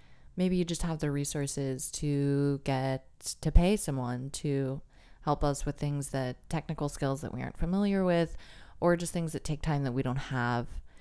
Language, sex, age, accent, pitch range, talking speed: English, female, 20-39, American, 125-150 Hz, 185 wpm